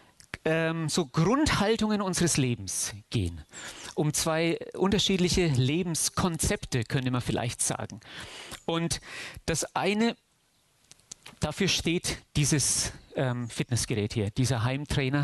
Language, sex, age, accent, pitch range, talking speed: German, male, 40-59, German, 130-175 Hz, 95 wpm